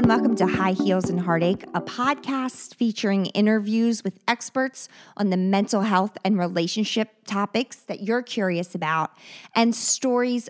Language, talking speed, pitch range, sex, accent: English, 145 wpm, 185-245 Hz, female, American